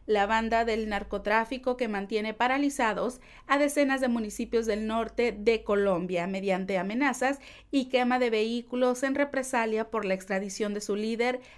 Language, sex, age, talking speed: Spanish, female, 40-59, 150 wpm